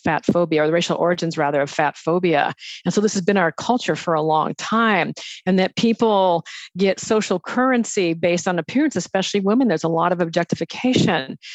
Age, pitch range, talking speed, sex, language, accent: 50-69, 175-215 Hz, 190 wpm, female, English, American